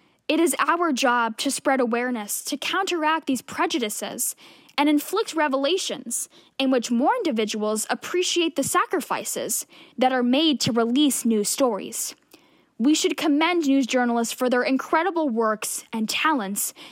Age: 10-29